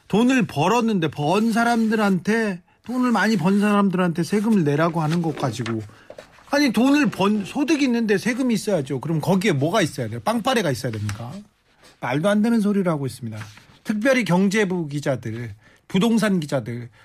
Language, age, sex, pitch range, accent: Korean, 40-59, male, 140-195 Hz, native